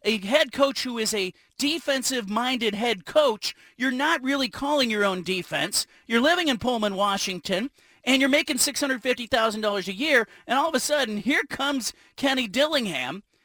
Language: English